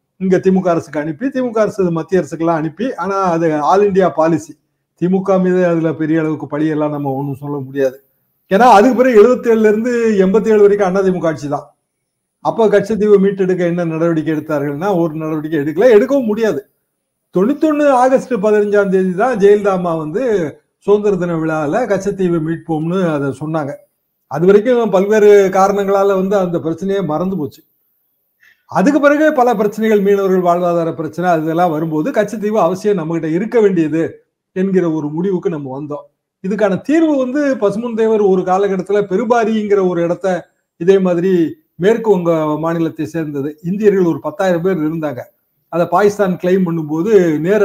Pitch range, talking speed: 160-210 Hz, 145 wpm